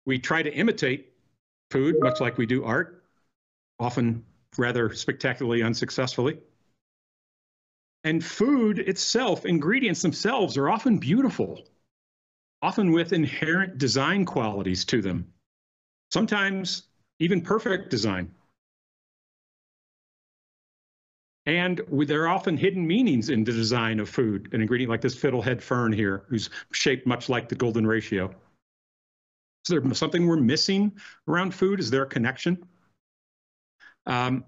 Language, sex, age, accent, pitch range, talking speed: English, male, 50-69, American, 115-175 Hz, 120 wpm